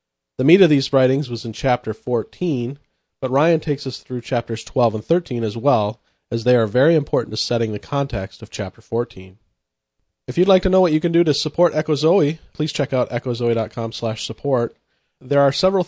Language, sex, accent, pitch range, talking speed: English, male, American, 115-150 Hz, 200 wpm